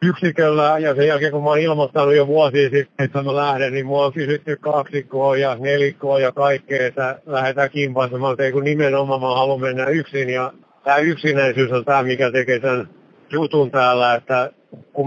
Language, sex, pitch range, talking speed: Finnish, male, 125-140 Hz, 170 wpm